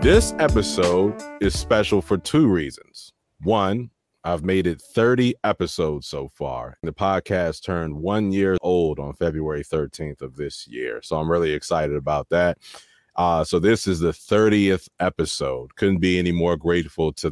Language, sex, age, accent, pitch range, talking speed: English, male, 30-49, American, 80-105 Hz, 160 wpm